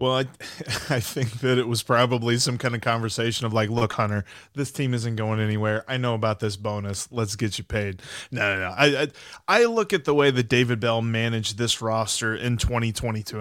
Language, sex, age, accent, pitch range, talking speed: English, male, 30-49, American, 120-175 Hz, 215 wpm